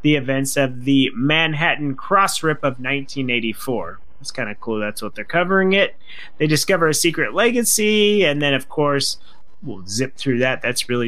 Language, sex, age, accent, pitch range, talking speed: English, male, 30-49, American, 135-170 Hz, 180 wpm